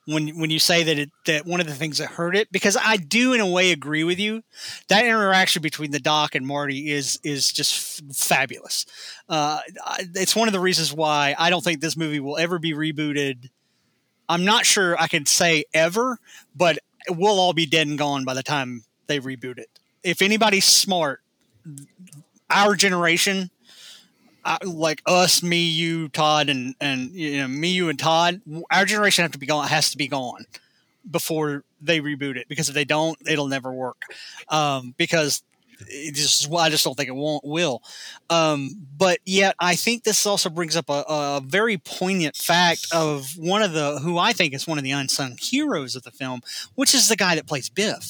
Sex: male